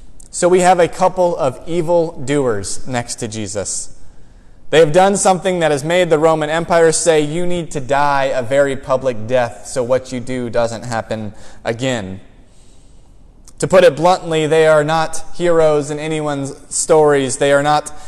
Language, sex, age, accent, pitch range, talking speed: English, male, 20-39, American, 135-180 Hz, 170 wpm